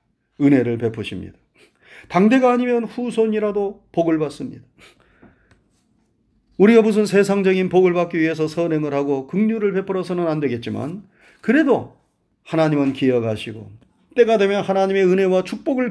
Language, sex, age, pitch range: Korean, male, 40-59, 130-190 Hz